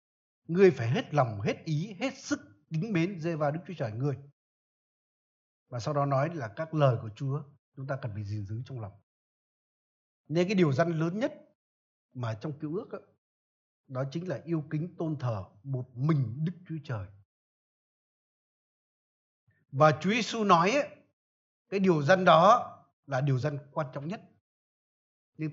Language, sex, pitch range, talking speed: Vietnamese, male, 130-185 Hz, 170 wpm